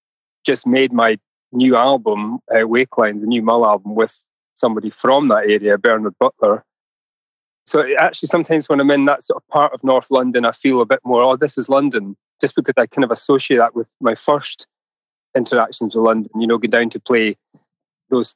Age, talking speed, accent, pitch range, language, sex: 30-49, 200 wpm, British, 115-145 Hz, English, male